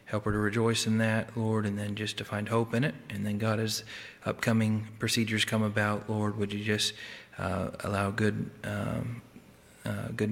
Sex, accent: male, American